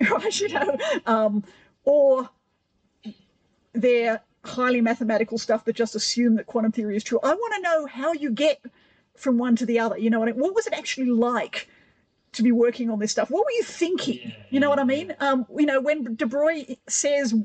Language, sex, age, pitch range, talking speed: English, female, 50-69, 230-280 Hz, 210 wpm